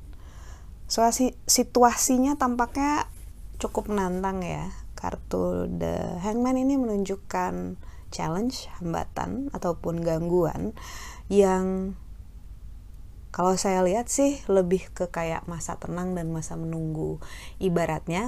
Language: Indonesian